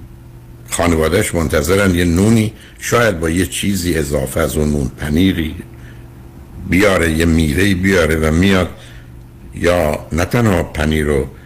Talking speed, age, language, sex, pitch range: 125 wpm, 60-79, Persian, male, 70-90 Hz